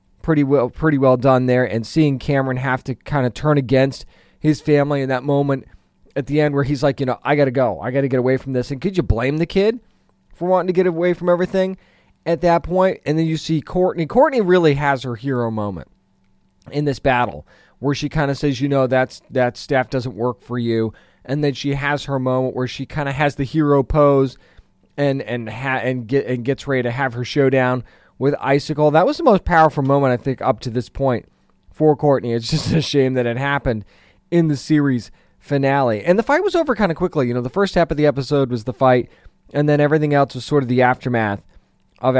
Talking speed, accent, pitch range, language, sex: 235 wpm, American, 125-145 Hz, English, male